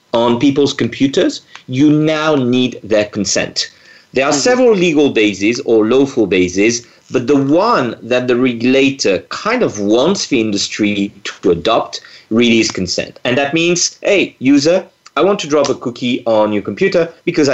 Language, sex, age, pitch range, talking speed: English, male, 40-59, 115-150 Hz, 160 wpm